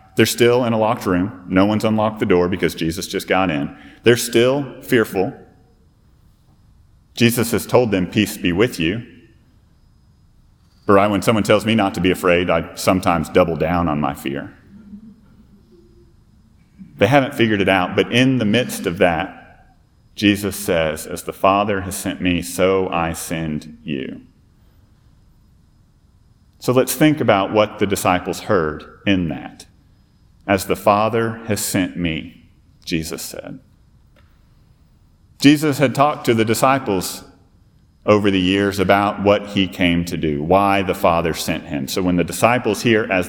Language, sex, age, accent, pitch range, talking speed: English, male, 40-59, American, 90-110 Hz, 150 wpm